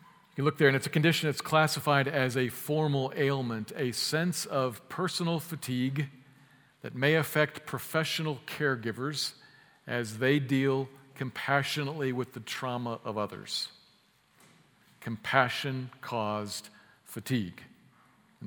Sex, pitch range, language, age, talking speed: male, 120-145 Hz, English, 50-69, 115 wpm